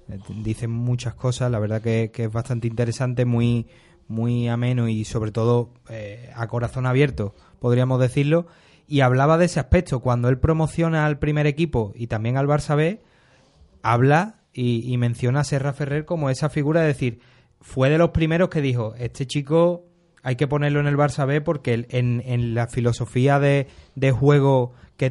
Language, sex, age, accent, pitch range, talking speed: Spanish, male, 20-39, Spanish, 120-150 Hz, 180 wpm